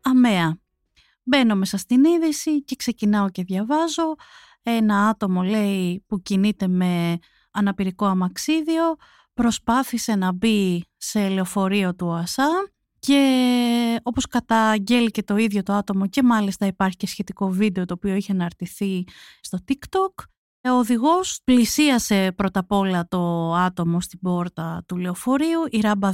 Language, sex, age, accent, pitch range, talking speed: Greek, female, 30-49, native, 190-275 Hz, 135 wpm